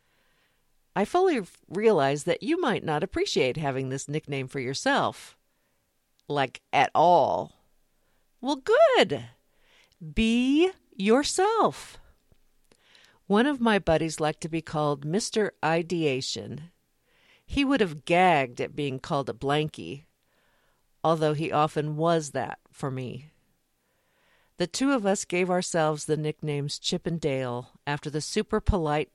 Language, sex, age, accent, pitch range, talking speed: English, female, 50-69, American, 145-210 Hz, 125 wpm